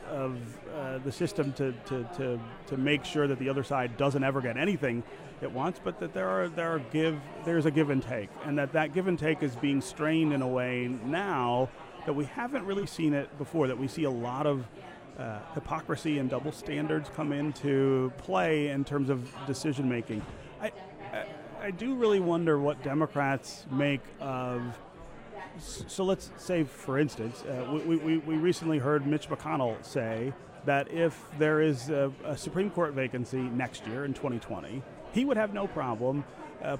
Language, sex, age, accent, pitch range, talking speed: English, male, 40-59, American, 130-160 Hz, 185 wpm